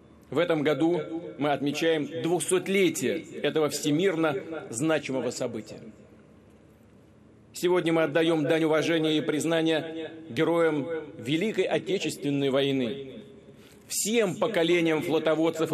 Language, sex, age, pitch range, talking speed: Russian, male, 40-59, 140-170 Hz, 90 wpm